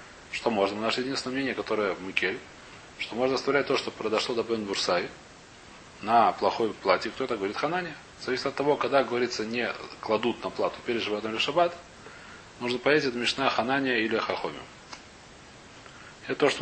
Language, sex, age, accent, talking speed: Russian, male, 30-49, native, 170 wpm